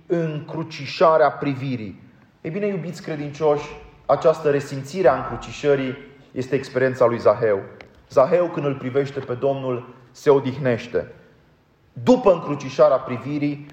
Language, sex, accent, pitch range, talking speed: Romanian, male, native, 125-145 Hz, 110 wpm